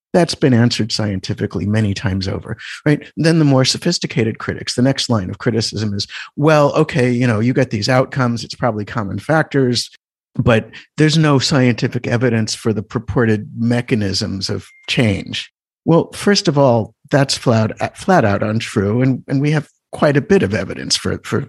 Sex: male